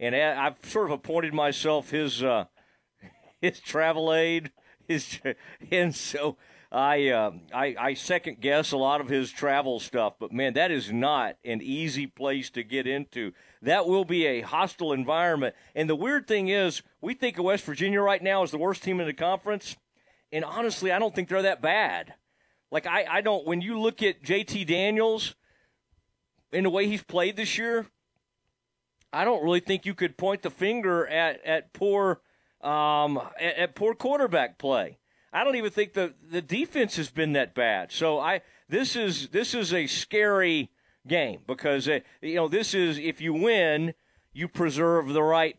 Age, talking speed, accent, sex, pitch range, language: 40-59, 185 wpm, American, male, 155-200 Hz, English